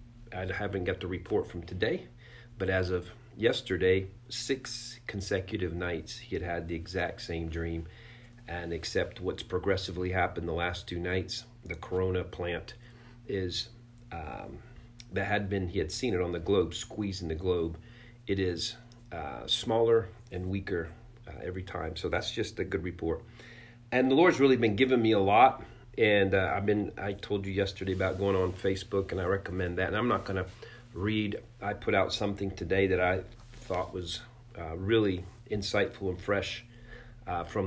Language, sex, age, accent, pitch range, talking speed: English, male, 40-59, American, 90-115 Hz, 175 wpm